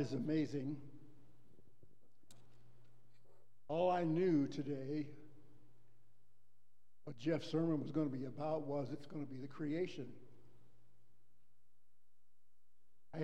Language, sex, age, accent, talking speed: English, male, 60-79, American, 100 wpm